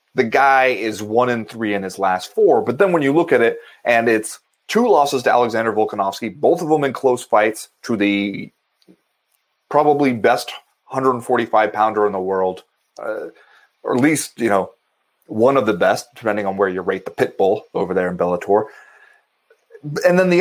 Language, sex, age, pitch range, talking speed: English, male, 30-49, 110-160 Hz, 185 wpm